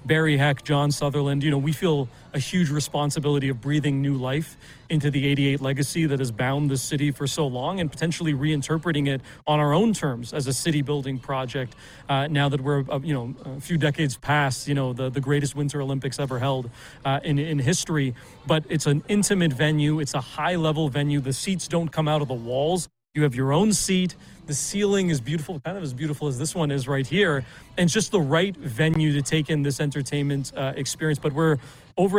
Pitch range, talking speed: 140-160 Hz, 220 wpm